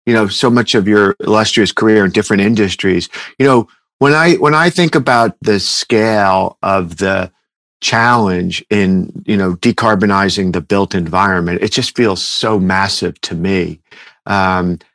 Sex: male